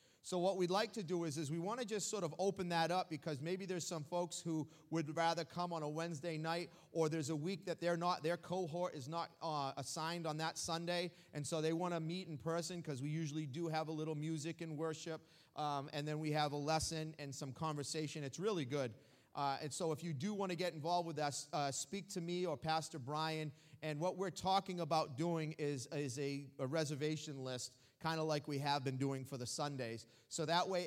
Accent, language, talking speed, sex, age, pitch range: American, English, 235 wpm, male, 30-49, 140-170 Hz